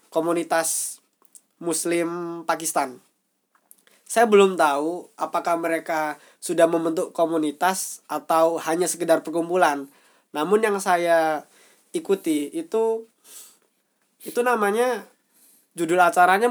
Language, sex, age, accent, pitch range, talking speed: Indonesian, male, 20-39, native, 155-210 Hz, 85 wpm